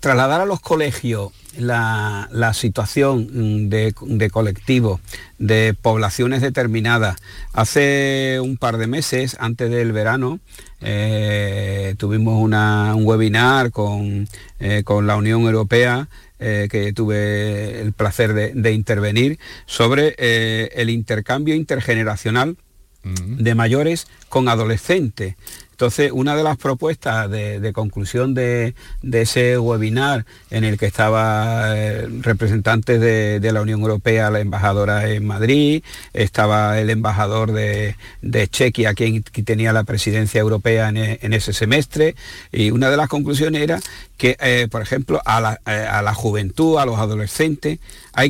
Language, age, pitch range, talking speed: Spanish, 50-69, 105-130 Hz, 135 wpm